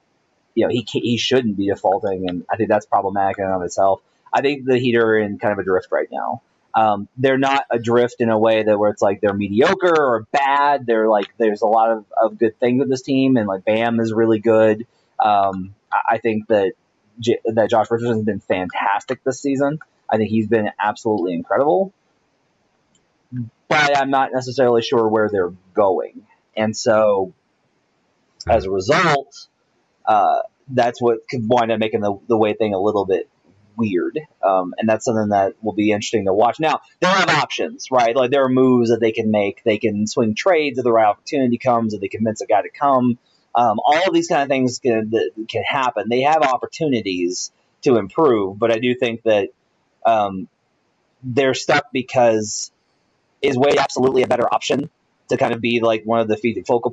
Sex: male